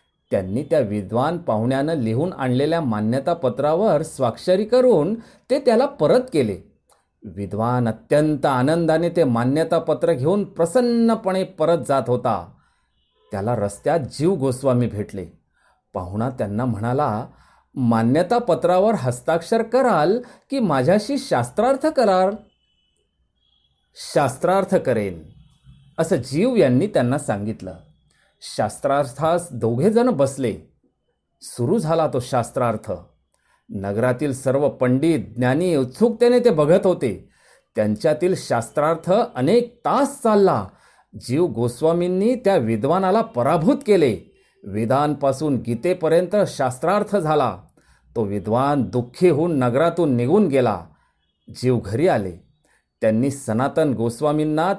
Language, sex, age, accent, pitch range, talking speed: Marathi, male, 40-59, native, 120-185 Hz, 95 wpm